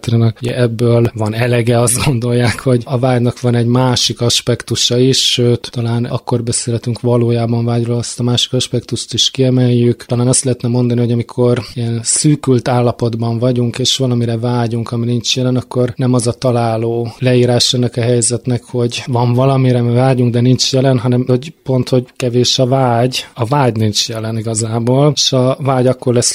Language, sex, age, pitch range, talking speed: Hungarian, male, 20-39, 115-125 Hz, 170 wpm